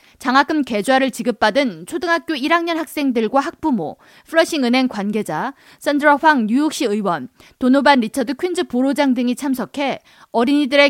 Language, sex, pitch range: Korean, female, 245-325 Hz